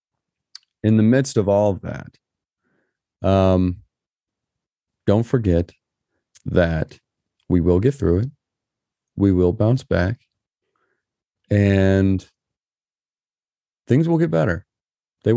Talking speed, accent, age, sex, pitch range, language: 100 wpm, American, 30-49, male, 95-130 Hz, English